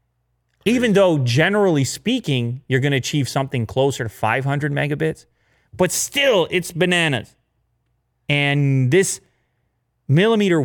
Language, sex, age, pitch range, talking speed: English, male, 30-49, 120-155 Hz, 115 wpm